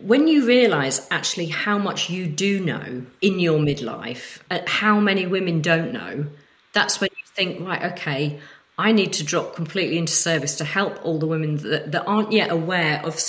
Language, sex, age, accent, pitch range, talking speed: English, female, 40-59, British, 155-205 Hz, 190 wpm